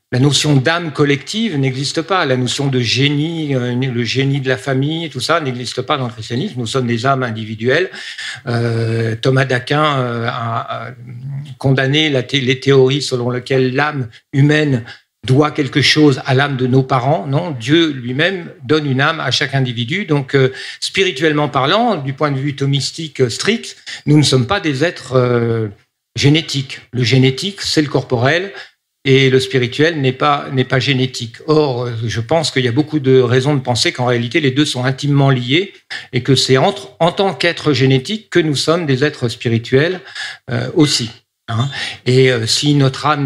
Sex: male